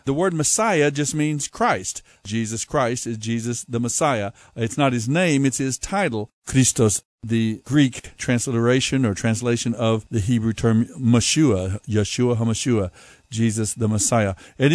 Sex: male